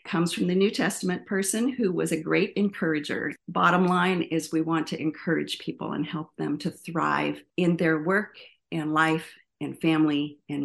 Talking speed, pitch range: 180 wpm, 150-185 Hz